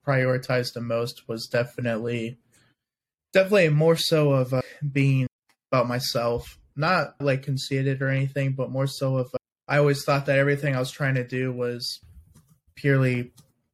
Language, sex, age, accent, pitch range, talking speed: English, male, 20-39, American, 125-135 Hz, 155 wpm